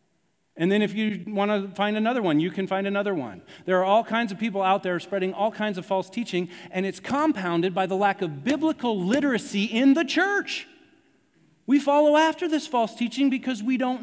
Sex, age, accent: male, 40-59, American